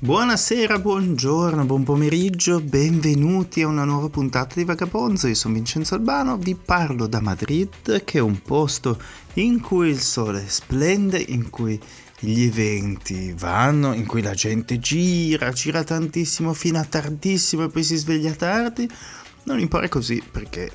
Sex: male